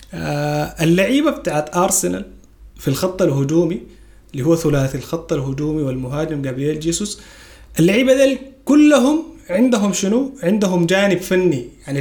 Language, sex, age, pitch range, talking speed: Arabic, male, 30-49, 140-190 Hz, 115 wpm